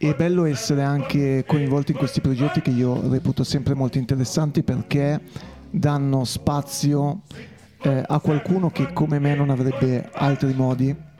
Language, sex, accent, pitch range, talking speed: Italian, male, native, 130-160 Hz, 145 wpm